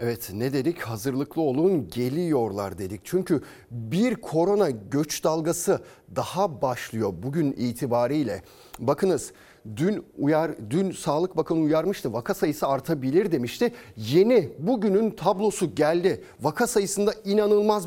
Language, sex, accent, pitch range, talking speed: Turkish, male, native, 140-200 Hz, 115 wpm